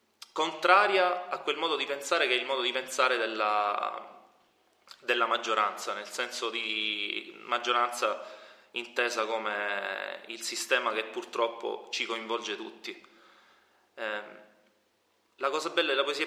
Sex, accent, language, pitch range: male, native, Italian, 105-135 Hz